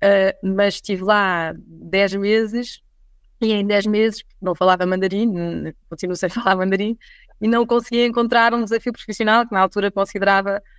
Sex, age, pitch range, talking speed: female, 20-39, 180-210 Hz, 155 wpm